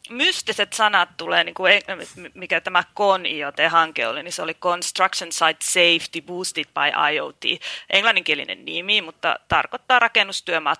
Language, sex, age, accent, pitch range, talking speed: Finnish, female, 30-49, native, 160-190 Hz, 135 wpm